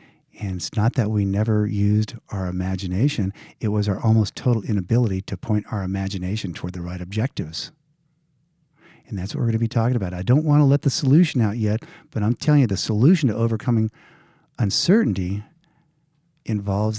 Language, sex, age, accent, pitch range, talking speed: English, male, 50-69, American, 95-150 Hz, 180 wpm